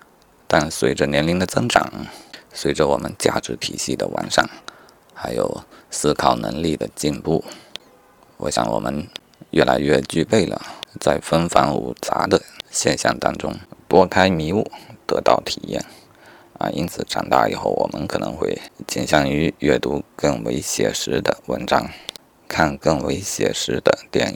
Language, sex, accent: Chinese, male, native